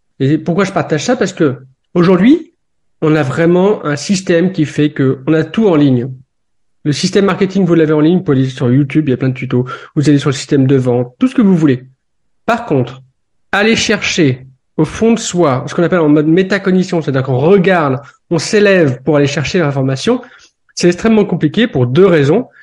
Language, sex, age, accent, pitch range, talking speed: French, male, 40-59, French, 135-180 Hz, 210 wpm